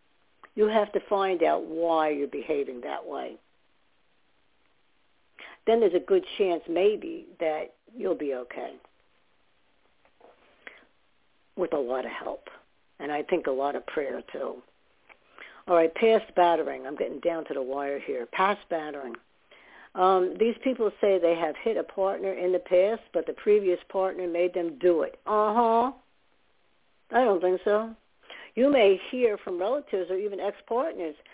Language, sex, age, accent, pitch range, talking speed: English, female, 60-79, American, 175-230 Hz, 155 wpm